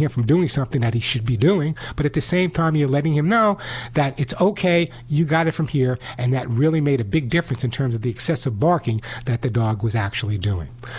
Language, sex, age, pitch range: English, male, 50-69, 125-175 Hz